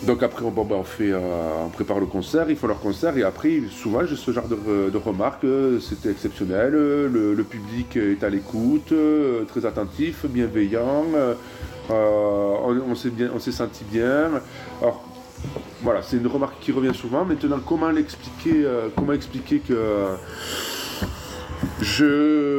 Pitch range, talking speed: 105-135 Hz, 140 wpm